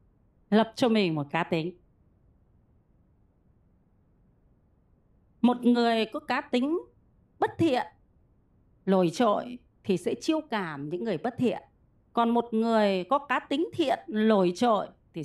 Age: 30-49